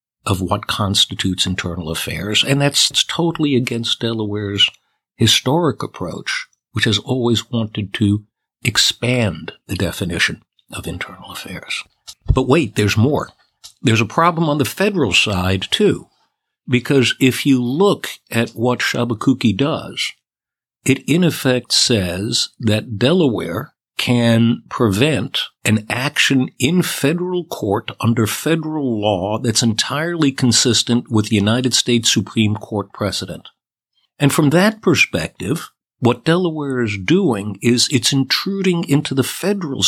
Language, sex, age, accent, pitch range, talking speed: English, male, 60-79, American, 110-140 Hz, 125 wpm